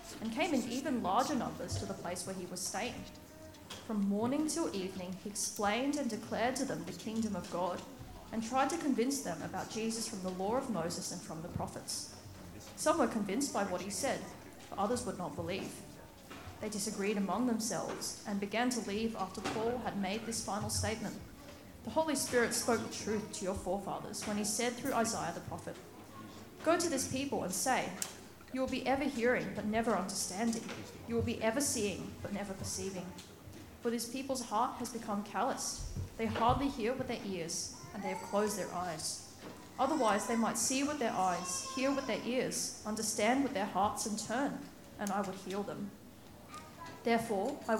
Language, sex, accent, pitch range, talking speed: English, female, Australian, 200-250 Hz, 190 wpm